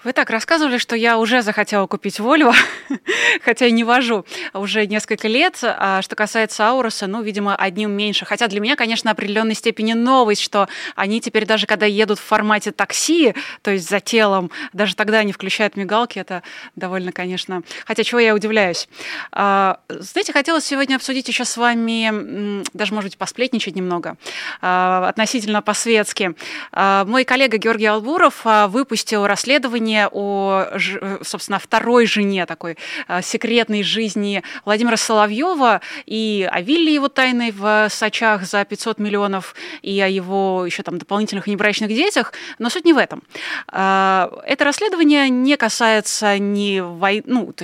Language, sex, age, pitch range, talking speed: Russian, female, 20-39, 200-240 Hz, 145 wpm